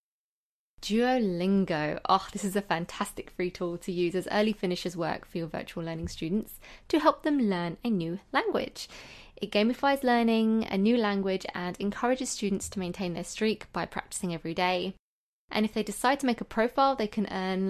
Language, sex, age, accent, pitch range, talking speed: English, female, 20-39, British, 175-215 Hz, 185 wpm